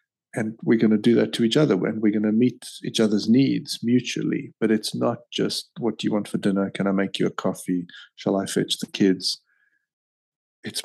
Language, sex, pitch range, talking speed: English, male, 100-115 Hz, 220 wpm